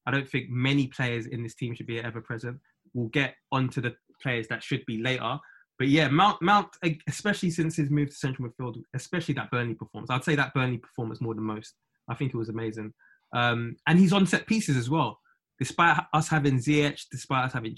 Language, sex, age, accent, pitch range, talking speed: English, male, 20-39, British, 120-150 Hz, 215 wpm